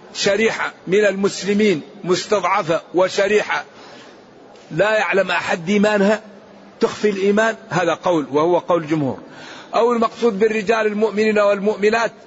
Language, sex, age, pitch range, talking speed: Arabic, male, 50-69, 180-215 Hz, 105 wpm